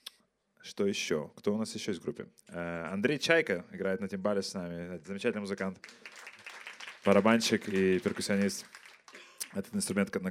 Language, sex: Russian, male